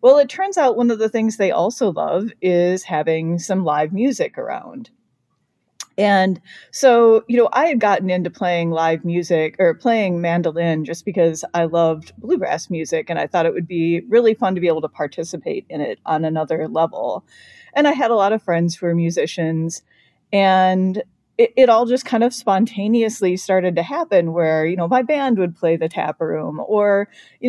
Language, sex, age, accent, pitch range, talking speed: English, female, 30-49, American, 170-225 Hz, 190 wpm